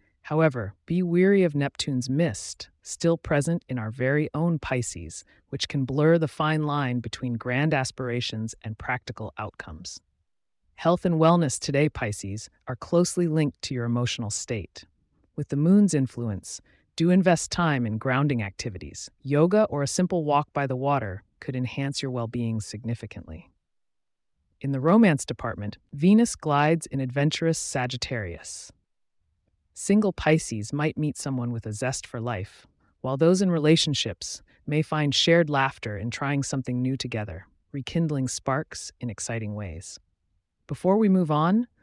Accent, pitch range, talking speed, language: American, 110-155 Hz, 145 wpm, English